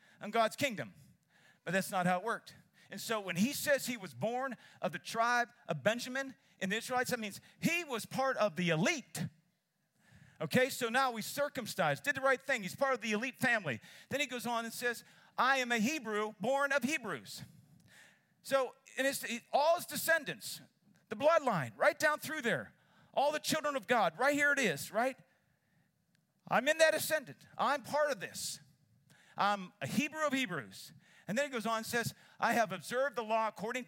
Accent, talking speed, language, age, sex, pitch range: American, 195 wpm, English, 50-69, male, 190-265 Hz